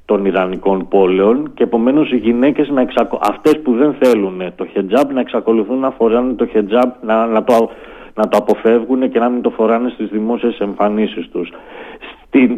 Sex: male